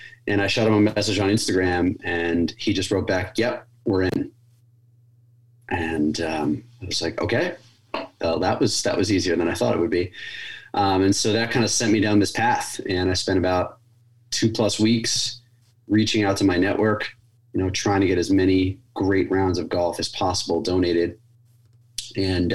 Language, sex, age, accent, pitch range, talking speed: English, male, 30-49, American, 90-120 Hz, 190 wpm